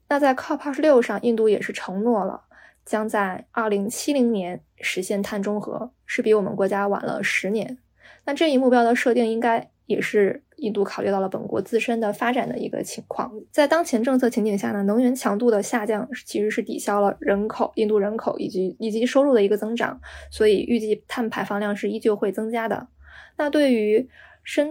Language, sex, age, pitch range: Chinese, female, 20-39, 205-250 Hz